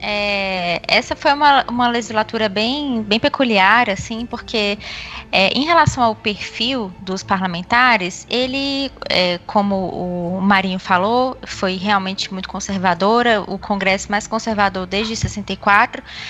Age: 20-39